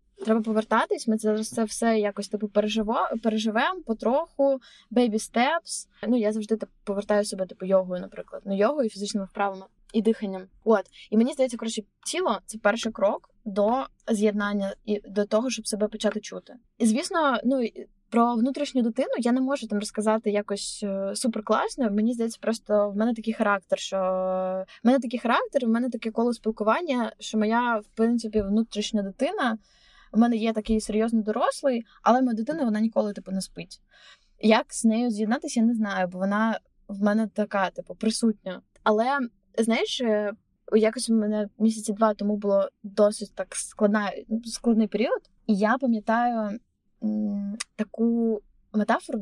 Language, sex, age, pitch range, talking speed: Ukrainian, female, 20-39, 205-235 Hz, 155 wpm